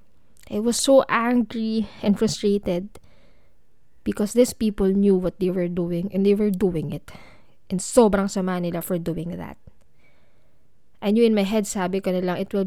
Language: Filipino